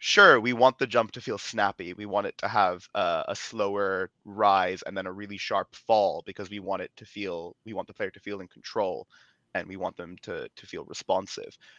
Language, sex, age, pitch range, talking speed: English, male, 20-39, 100-130 Hz, 230 wpm